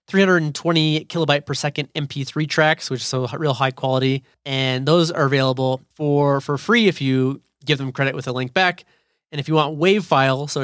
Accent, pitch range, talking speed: American, 135-165 Hz, 195 wpm